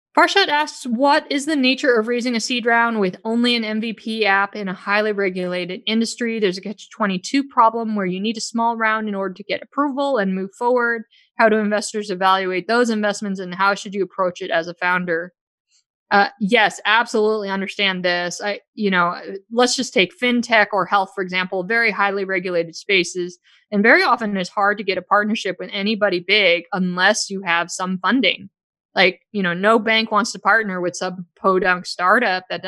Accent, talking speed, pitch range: American, 190 wpm, 190-230 Hz